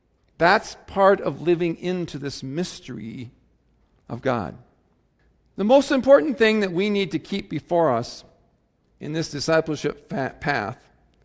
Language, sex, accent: English, male, American